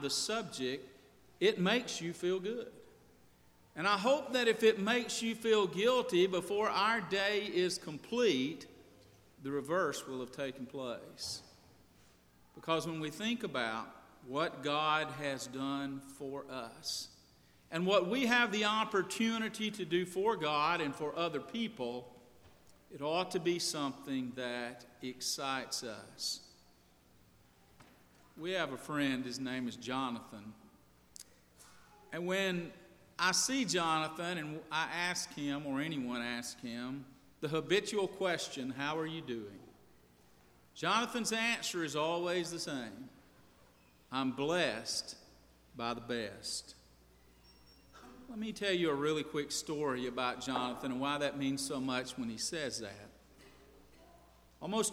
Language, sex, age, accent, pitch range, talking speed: English, male, 50-69, American, 125-185 Hz, 130 wpm